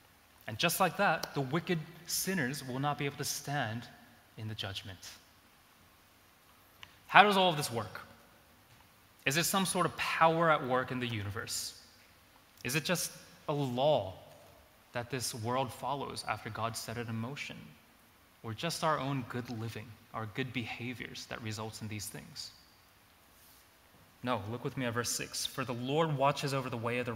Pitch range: 110-155 Hz